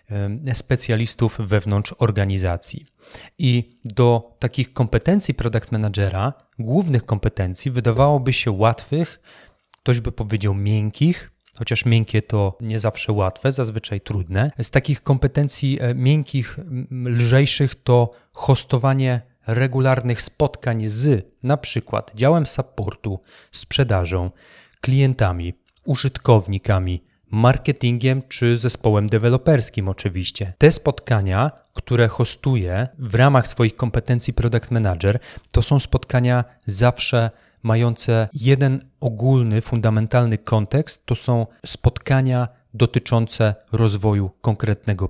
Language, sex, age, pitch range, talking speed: Polish, male, 30-49, 110-130 Hz, 95 wpm